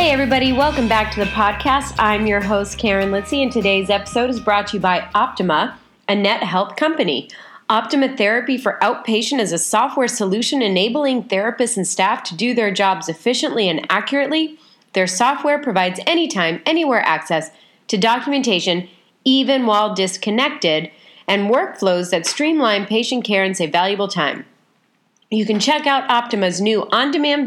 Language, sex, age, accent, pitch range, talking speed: English, female, 30-49, American, 195-265 Hz, 155 wpm